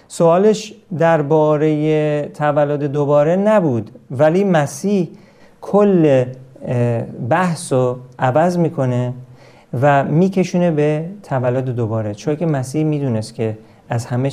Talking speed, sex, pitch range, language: 95 wpm, male, 120-155 Hz, Persian